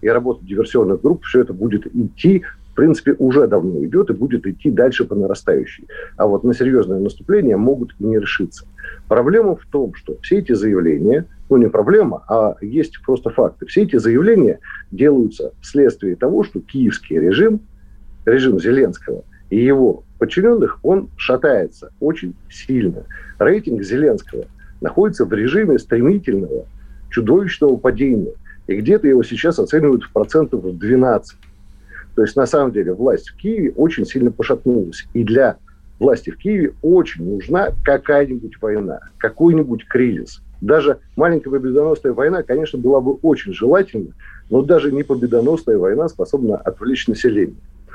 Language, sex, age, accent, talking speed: Russian, male, 50-69, native, 145 wpm